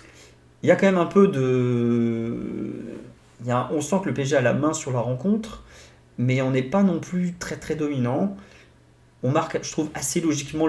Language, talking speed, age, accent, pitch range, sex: French, 200 wpm, 30-49, French, 120-175 Hz, male